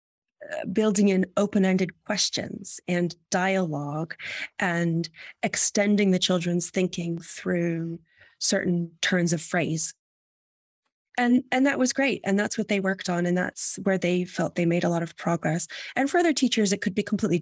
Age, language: 30-49, English